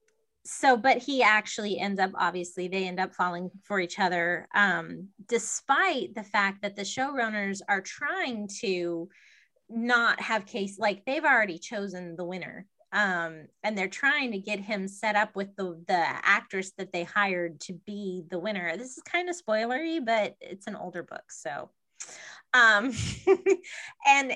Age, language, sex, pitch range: 20-39, English, female, 175-230 Hz